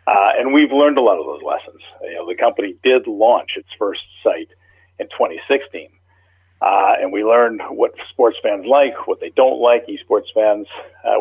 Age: 50-69